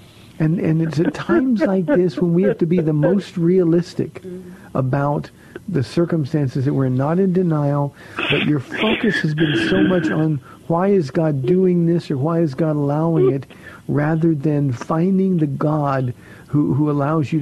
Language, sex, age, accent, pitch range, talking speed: English, male, 50-69, American, 140-175 Hz, 175 wpm